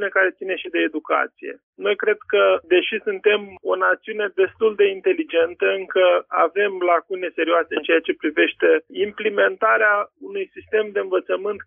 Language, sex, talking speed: Romanian, male, 145 wpm